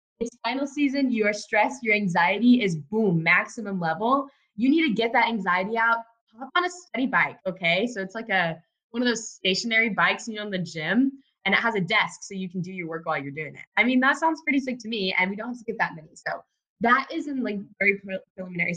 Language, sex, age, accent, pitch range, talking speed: English, female, 10-29, American, 165-230 Hz, 245 wpm